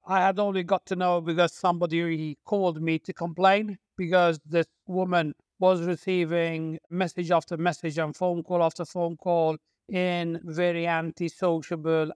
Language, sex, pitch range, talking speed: English, male, 170-195 Hz, 145 wpm